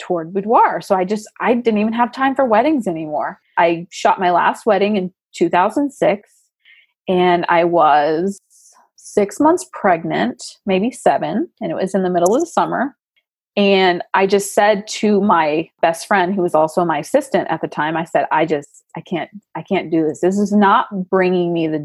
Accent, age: American, 30-49